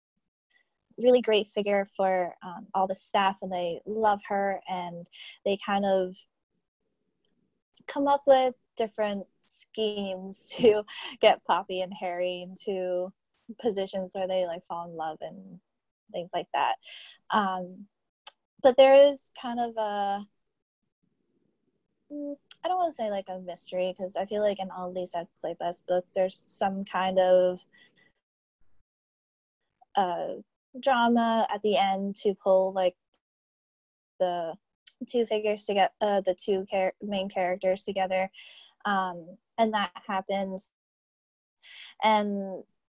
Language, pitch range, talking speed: English, 185-220 Hz, 130 wpm